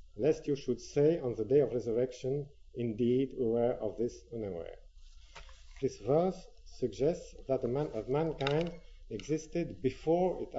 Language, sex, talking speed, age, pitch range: English, male, 140 wpm, 50-69, 95-155 Hz